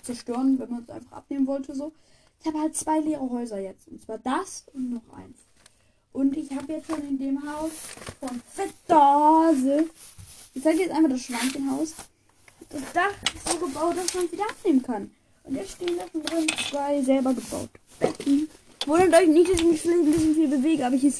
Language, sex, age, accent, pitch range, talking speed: German, female, 10-29, German, 260-320 Hz, 195 wpm